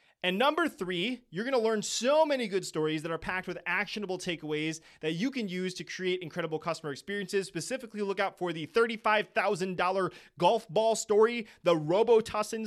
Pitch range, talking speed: 170-220 Hz, 170 wpm